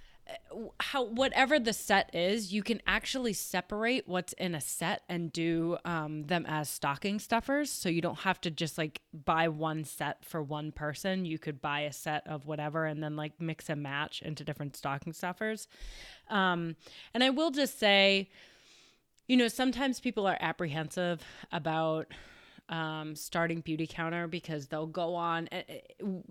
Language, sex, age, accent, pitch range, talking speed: English, female, 20-39, American, 155-205 Hz, 160 wpm